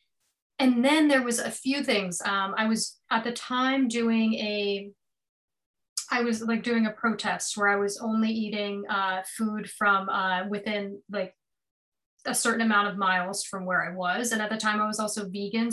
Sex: female